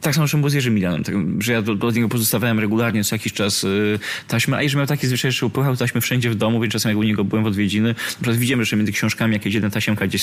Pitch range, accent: 100-120 Hz, native